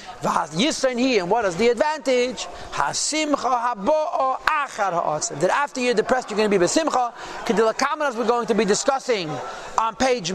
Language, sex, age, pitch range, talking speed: English, male, 40-59, 225-290 Hz, 120 wpm